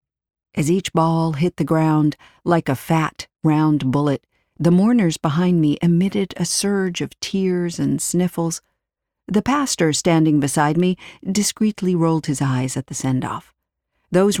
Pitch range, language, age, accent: 150-180 Hz, English, 50-69, American